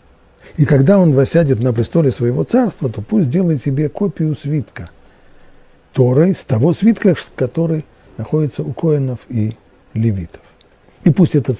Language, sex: Russian, male